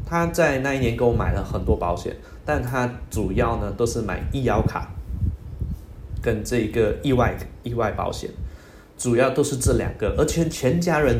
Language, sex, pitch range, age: Chinese, male, 95-120 Hz, 20-39